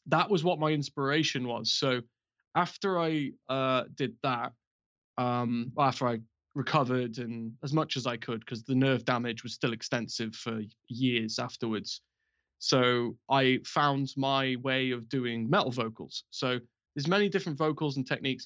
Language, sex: English, male